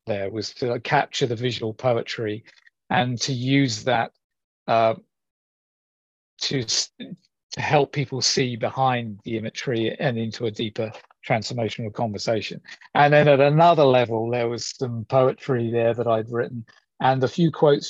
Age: 40-59